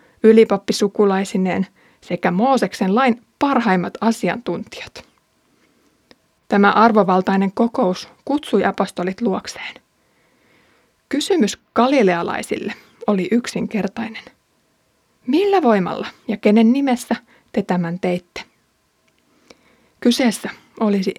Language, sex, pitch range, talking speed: Finnish, female, 200-245 Hz, 75 wpm